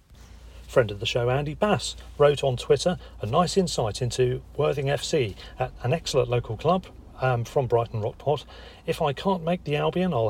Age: 40-59